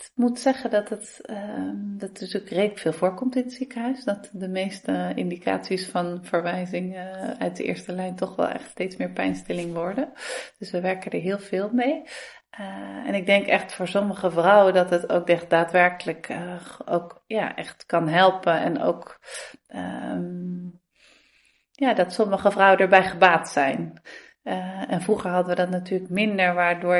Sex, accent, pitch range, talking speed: female, Dutch, 180-210 Hz, 175 wpm